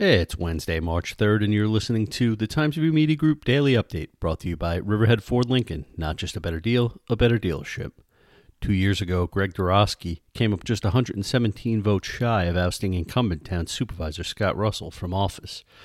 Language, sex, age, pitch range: English, male, 40-59, 90-115 Hz